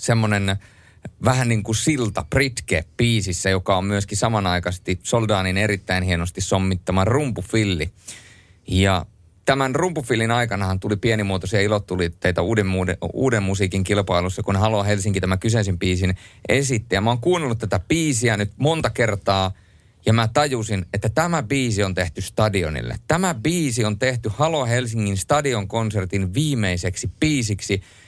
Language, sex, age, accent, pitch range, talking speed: Finnish, male, 30-49, native, 95-120 Hz, 135 wpm